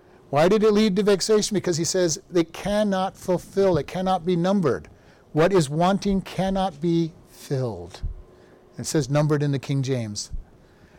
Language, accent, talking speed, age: English, American, 160 wpm, 50-69